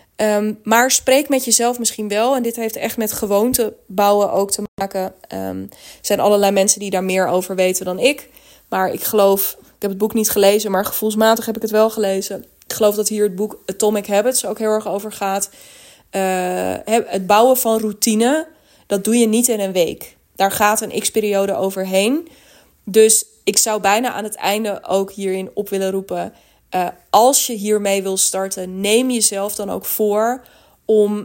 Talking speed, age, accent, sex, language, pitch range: 190 wpm, 20-39, Dutch, female, Dutch, 195-220 Hz